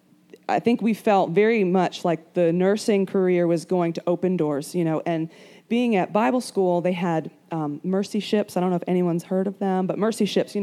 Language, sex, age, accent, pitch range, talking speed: English, female, 20-39, American, 170-205 Hz, 220 wpm